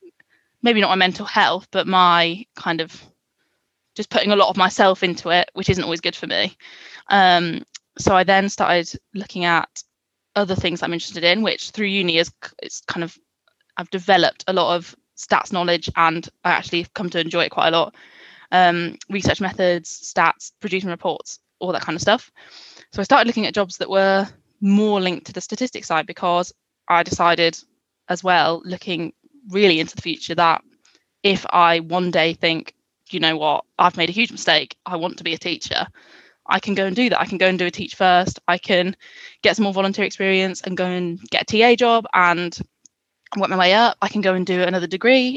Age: 10-29